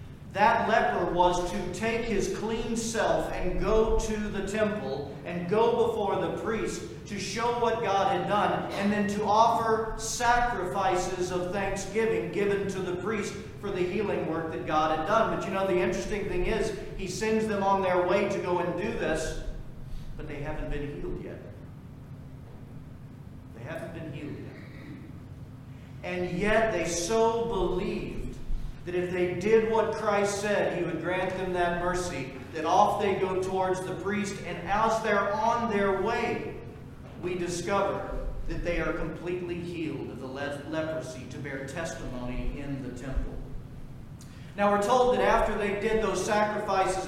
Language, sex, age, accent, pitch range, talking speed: English, male, 40-59, American, 150-205 Hz, 165 wpm